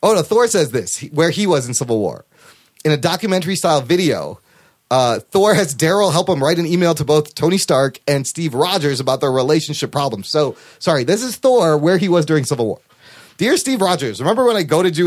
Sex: male